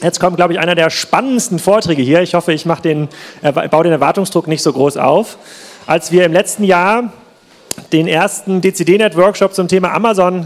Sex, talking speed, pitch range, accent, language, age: male, 190 wpm, 155-190 Hz, German, German, 30-49